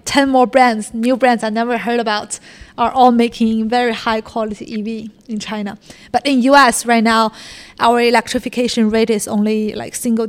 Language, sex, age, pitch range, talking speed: English, female, 20-39, 220-245 Hz, 175 wpm